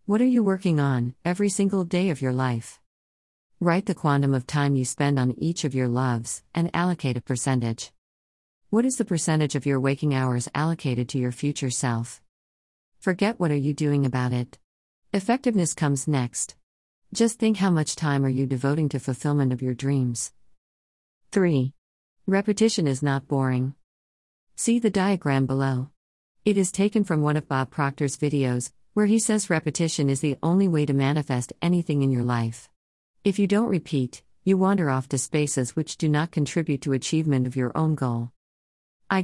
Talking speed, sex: 175 wpm, female